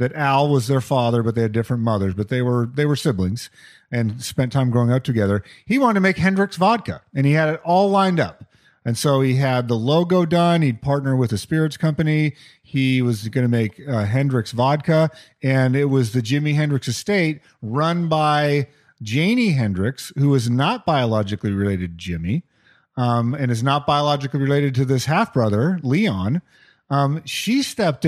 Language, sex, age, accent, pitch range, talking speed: English, male, 40-59, American, 125-175 Hz, 185 wpm